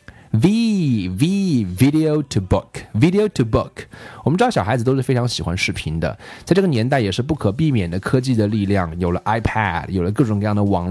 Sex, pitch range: male, 100-145 Hz